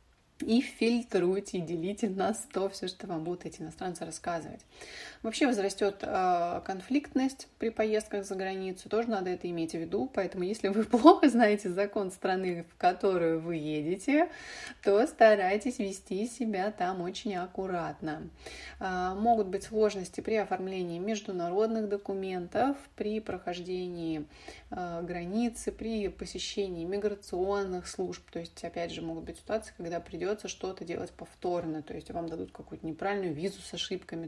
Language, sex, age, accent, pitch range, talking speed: Russian, female, 20-39, native, 175-220 Hz, 135 wpm